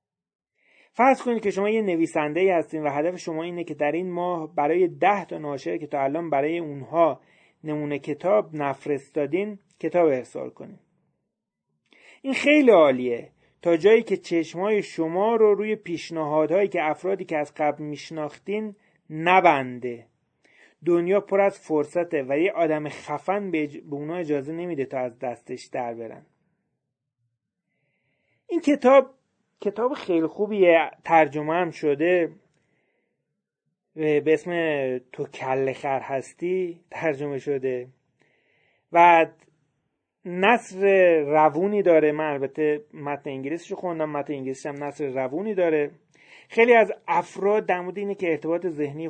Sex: male